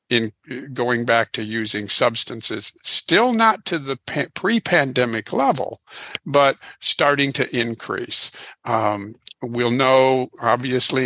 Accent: American